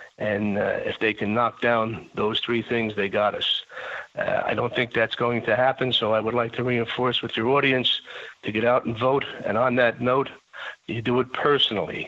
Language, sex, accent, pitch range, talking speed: English, male, American, 110-130 Hz, 215 wpm